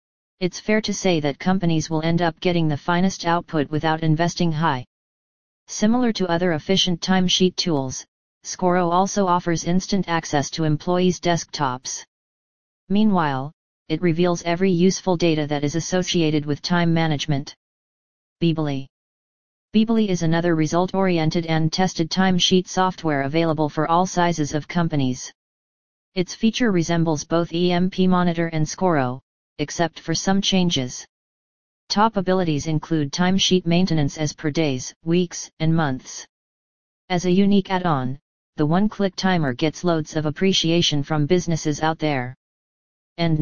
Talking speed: 135 wpm